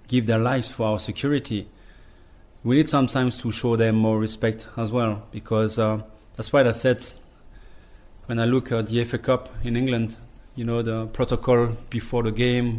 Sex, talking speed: male, 180 wpm